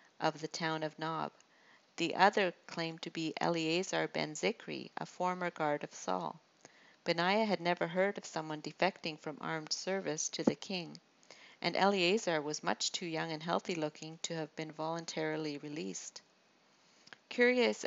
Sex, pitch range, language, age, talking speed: female, 155-180 Hz, English, 50-69, 150 wpm